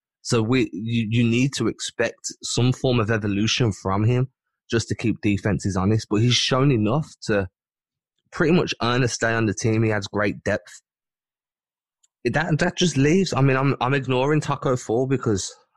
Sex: male